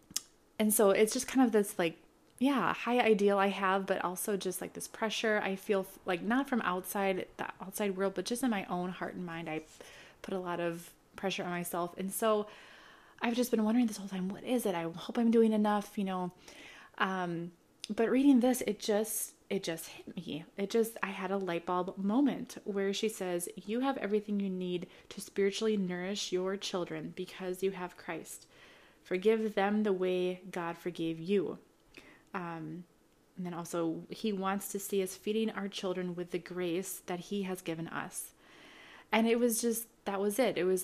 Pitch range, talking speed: 175-215 Hz, 195 wpm